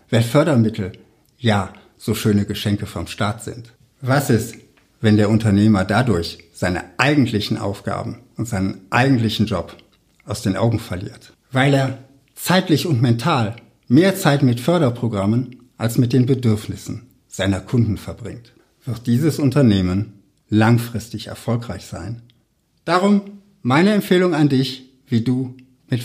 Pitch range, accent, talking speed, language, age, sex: 105-145 Hz, German, 130 wpm, German, 60-79, male